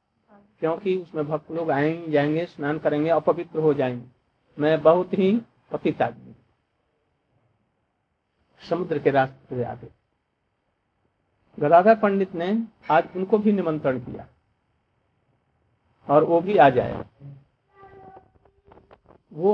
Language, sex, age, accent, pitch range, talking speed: Hindi, male, 50-69, native, 125-190 Hz, 100 wpm